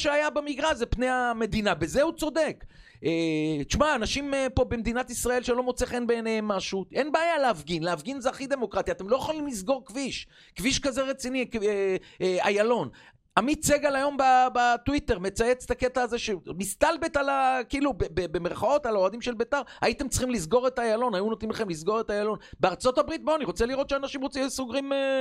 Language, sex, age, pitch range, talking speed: Hebrew, male, 40-59, 210-280 Hz, 170 wpm